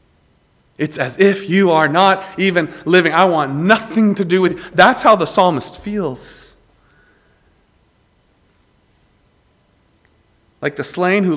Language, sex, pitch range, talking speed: English, male, 120-170 Hz, 125 wpm